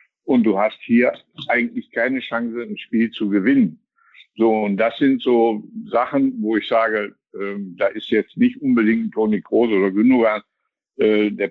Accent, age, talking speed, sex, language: German, 60-79, 165 wpm, male, German